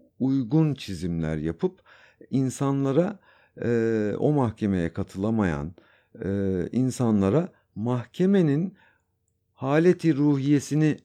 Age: 60-79